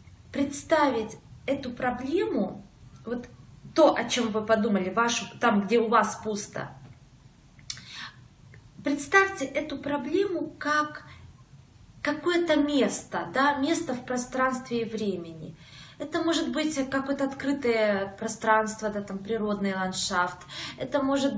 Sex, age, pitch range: female, 20-39, 215-275 Hz